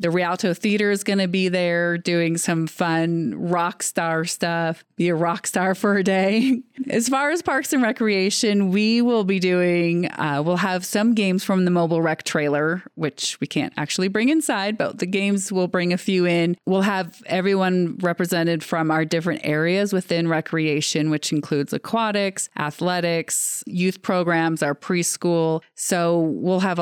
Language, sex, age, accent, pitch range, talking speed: English, female, 30-49, American, 155-185 Hz, 170 wpm